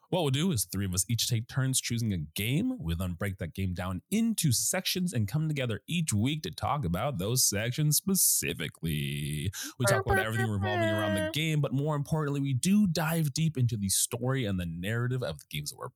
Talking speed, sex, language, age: 220 wpm, male, English, 30-49